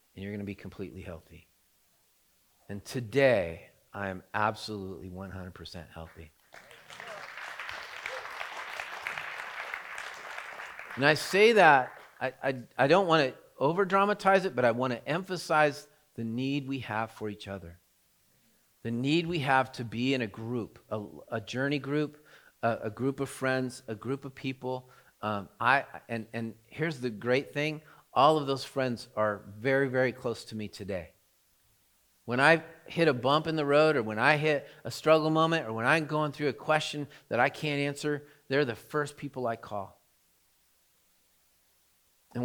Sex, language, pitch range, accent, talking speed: male, English, 105-145 Hz, American, 155 wpm